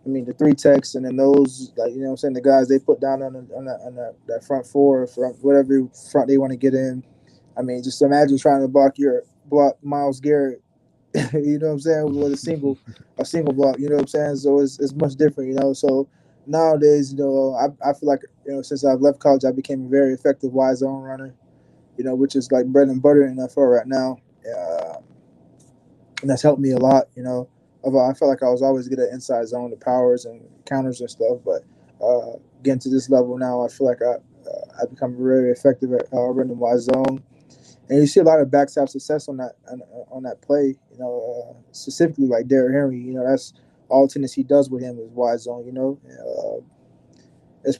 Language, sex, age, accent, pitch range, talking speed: English, male, 20-39, American, 130-140 Hz, 235 wpm